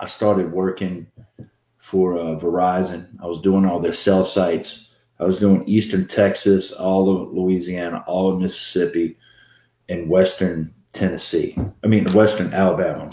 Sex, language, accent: male, English, American